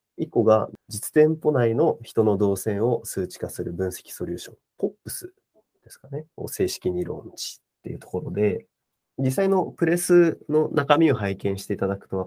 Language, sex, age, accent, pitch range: Japanese, male, 40-59, native, 95-145 Hz